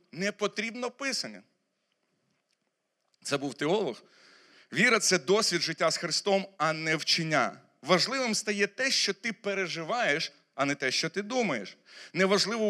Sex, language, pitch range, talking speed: male, Ukrainian, 165-210 Hz, 135 wpm